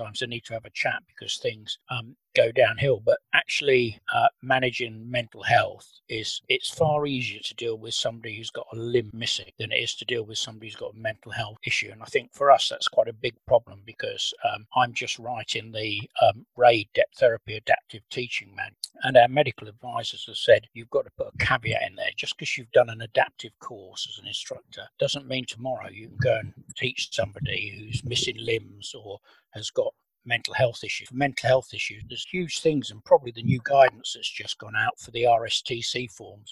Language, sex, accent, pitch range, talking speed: English, male, British, 115-140 Hz, 205 wpm